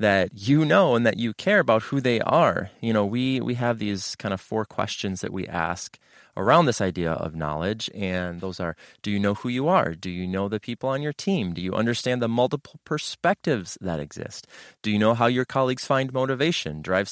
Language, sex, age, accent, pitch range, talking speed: English, male, 30-49, American, 95-125 Hz, 220 wpm